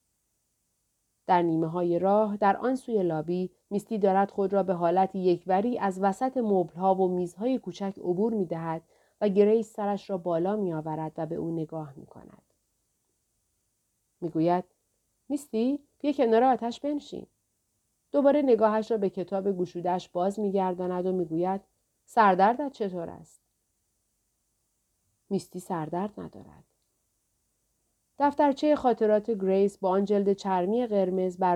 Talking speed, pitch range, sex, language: 125 wpm, 180-220 Hz, female, Persian